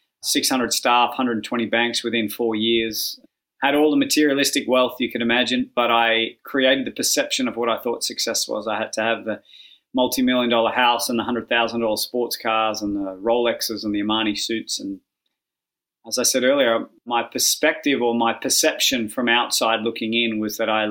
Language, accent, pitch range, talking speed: English, Australian, 110-120 Hz, 180 wpm